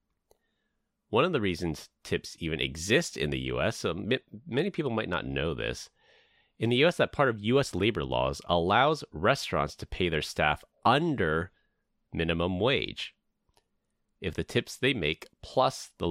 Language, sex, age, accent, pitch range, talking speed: English, male, 30-49, American, 75-95 Hz, 155 wpm